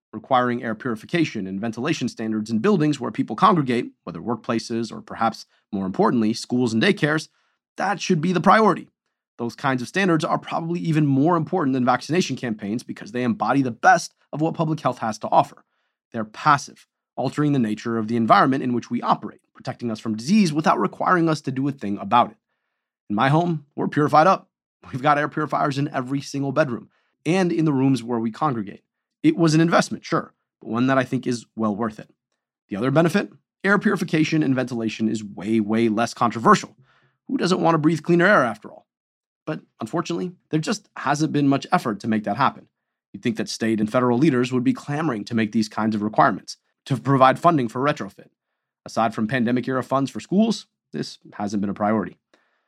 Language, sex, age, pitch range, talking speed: English, male, 30-49, 115-160 Hz, 200 wpm